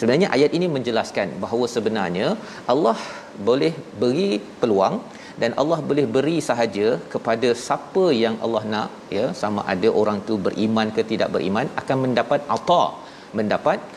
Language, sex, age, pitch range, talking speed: Malayalam, male, 40-59, 115-150 Hz, 140 wpm